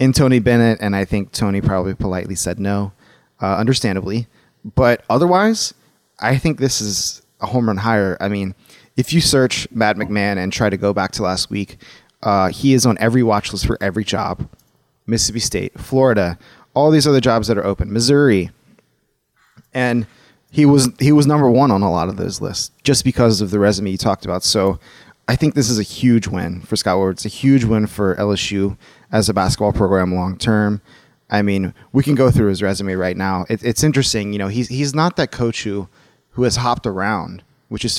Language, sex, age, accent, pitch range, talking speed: English, male, 30-49, American, 100-130 Hz, 205 wpm